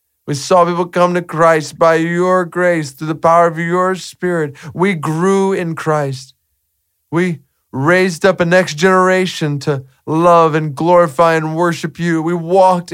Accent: American